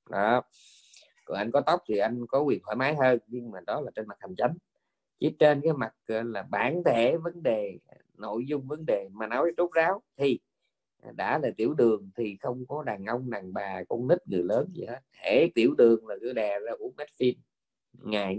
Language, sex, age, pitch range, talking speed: Vietnamese, male, 20-39, 110-145 Hz, 210 wpm